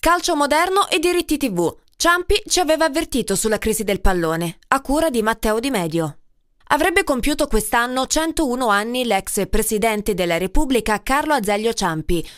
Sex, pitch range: female, 215-300 Hz